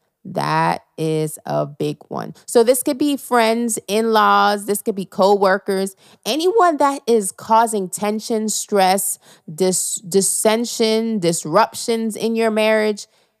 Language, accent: English, American